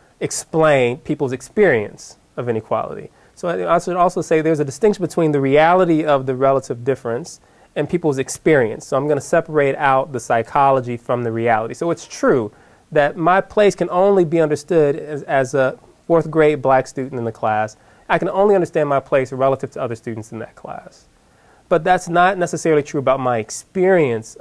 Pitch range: 120-165 Hz